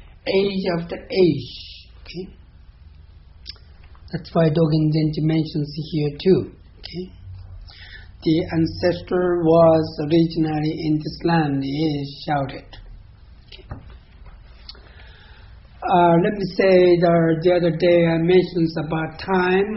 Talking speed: 105 wpm